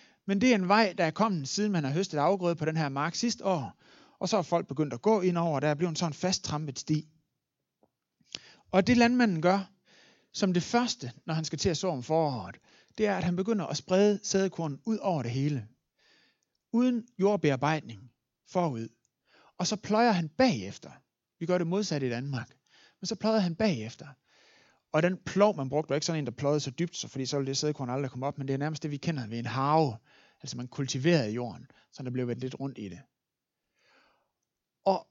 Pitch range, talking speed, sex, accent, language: 130-190 Hz, 220 wpm, male, native, Danish